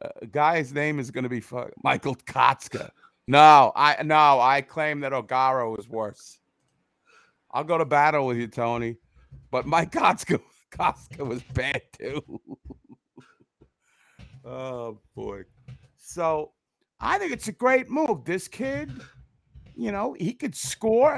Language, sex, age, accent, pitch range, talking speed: English, male, 50-69, American, 120-190 Hz, 140 wpm